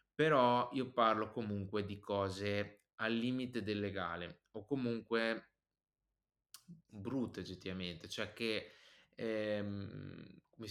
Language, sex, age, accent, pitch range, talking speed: Italian, male, 20-39, native, 100-120 Hz, 100 wpm